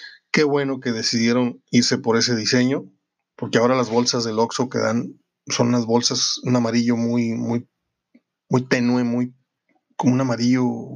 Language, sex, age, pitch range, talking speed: Spanish, male, 30-49, 120-145 Hz, 160 wpm